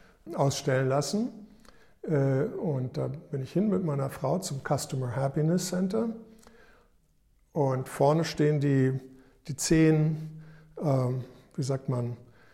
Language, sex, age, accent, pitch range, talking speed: German, male, 60-79, German, 135-175 Hz, 110 wpm